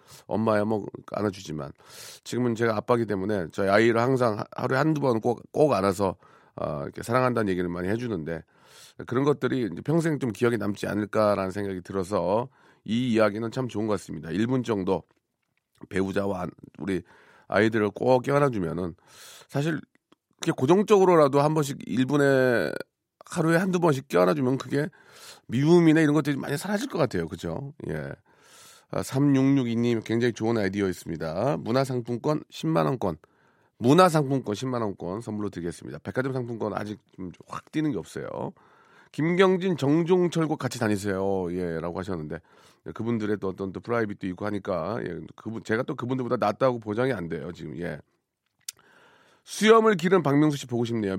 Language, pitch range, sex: Korean, 100-140 Hz, male